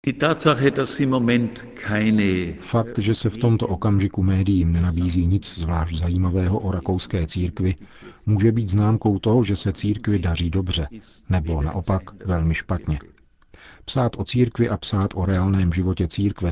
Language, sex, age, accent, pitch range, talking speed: Czech, male, 50-69, native, 85-100 Hz, 130 wpm